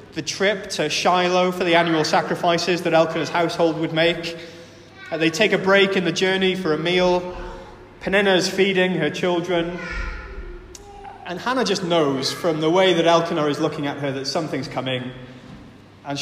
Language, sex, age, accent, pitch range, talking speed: English, male, 30-49, British, 130-185 Hz, 165 wpm